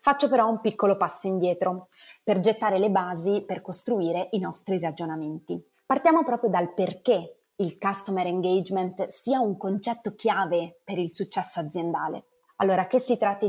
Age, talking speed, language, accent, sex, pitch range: 20-39, 150 wpm, Italian, native, female, 175-220 Hz